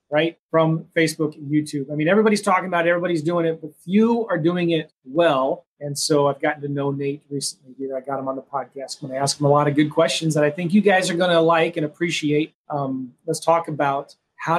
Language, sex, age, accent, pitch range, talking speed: English, male, 30-49, American, 145-180 Hz, 250 wpm